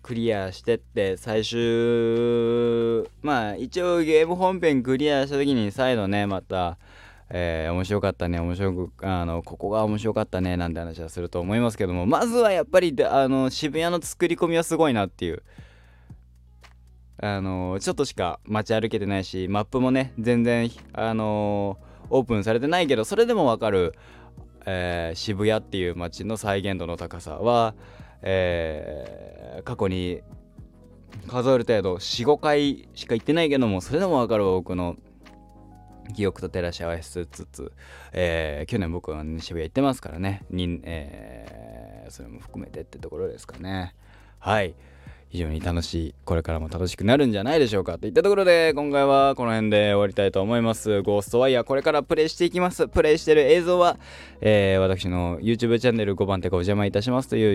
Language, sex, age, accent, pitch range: Japanese, male, 20-39, native, 90-130 Hz